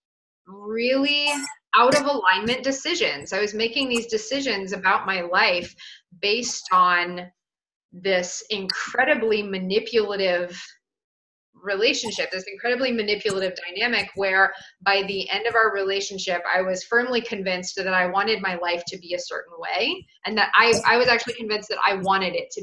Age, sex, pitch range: 20-39, female, 180-220 Hz